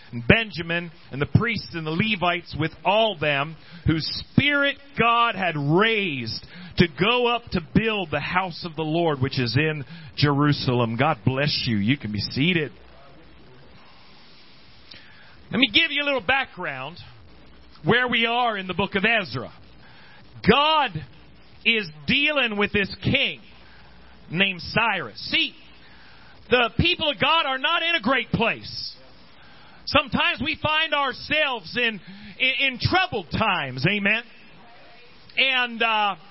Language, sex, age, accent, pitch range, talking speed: English, male, 40-59, American, 155-250 Hz, 135 wpm